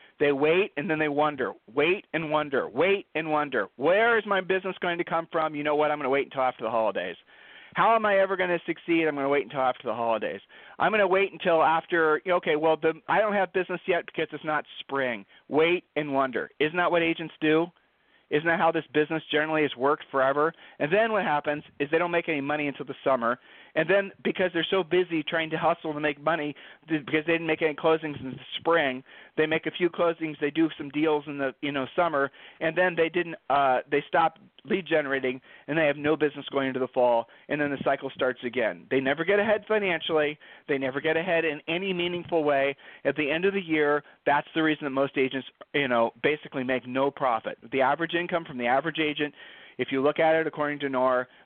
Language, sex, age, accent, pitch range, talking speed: English, male, 40-59, American, 140-165 Hz, 230 wpm